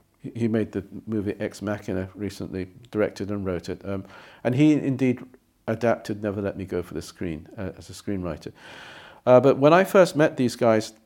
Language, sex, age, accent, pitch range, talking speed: English, male, 50-69, British, 105-140 Hz, 190 wpm